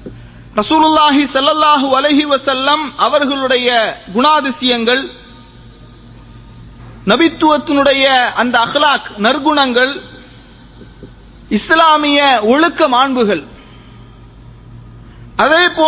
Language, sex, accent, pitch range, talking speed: English, male, Indian, 245-305 Hz, 70 wpm